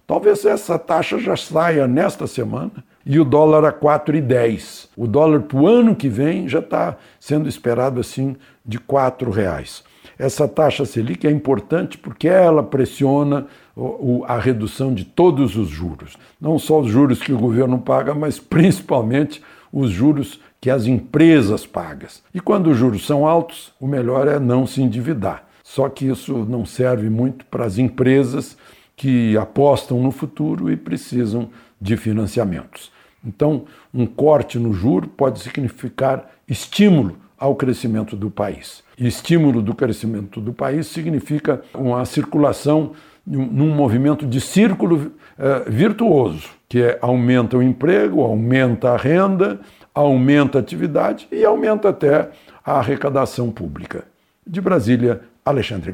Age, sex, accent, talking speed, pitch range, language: 60-79, male, Brazilian, 145 wpm, 120-150 Hz, Portuguese